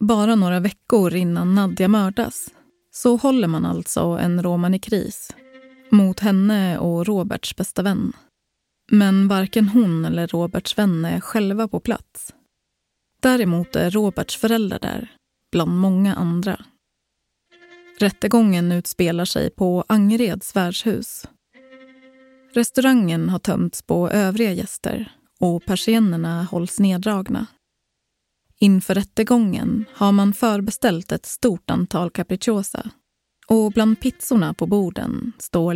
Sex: female